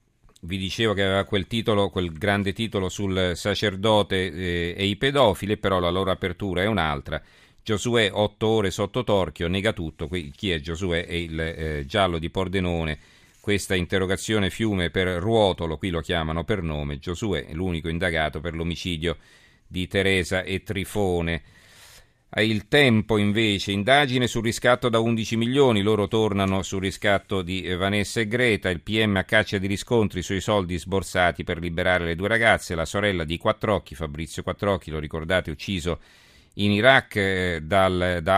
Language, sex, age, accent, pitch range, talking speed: Italian, male, 40-59, native, 90-110 Hz, 160 wpm